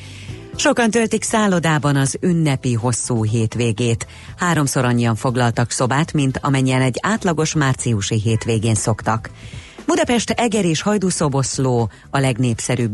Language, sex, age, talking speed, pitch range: Hungarian, female, 30-49, 110 wpm, 115-145 Hz